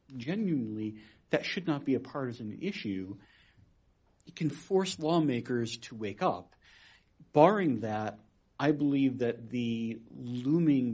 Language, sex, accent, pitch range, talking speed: English, male, American, 120-170 Hz, 120 wpm